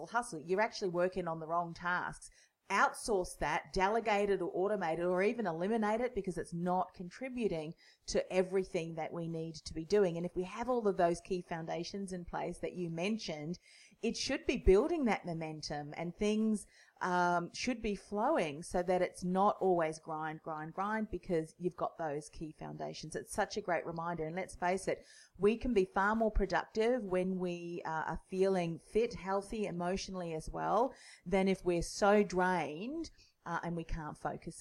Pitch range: 170-210 Hz